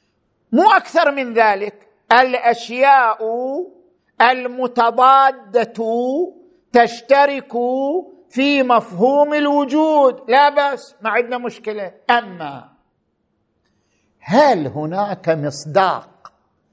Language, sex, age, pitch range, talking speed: Arabic, male, 50-69, 235-295 Hz, 70 wpm